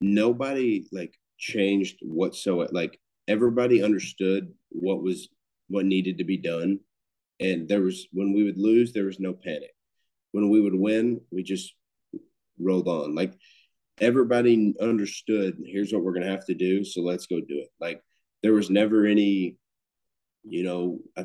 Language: English